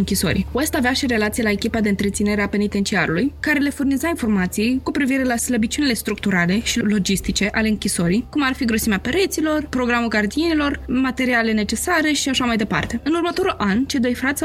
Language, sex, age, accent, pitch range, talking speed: Romanian, female, 20-39, native, 210-255 Hz, 180 wpm